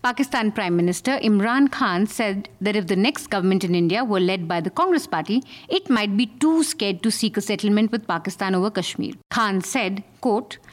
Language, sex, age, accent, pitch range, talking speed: English, female, 50-69, Indian, 195-260 Hz, 195 wpm